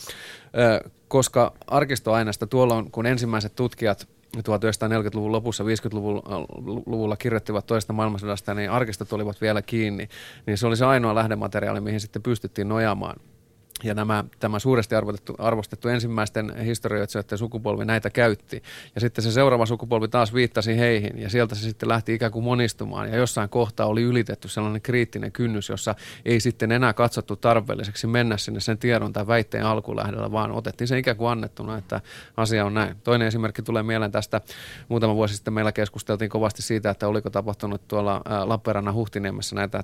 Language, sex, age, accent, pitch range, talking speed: Finnish, male, 30-49, native, 105-115 Hz, 160 wpm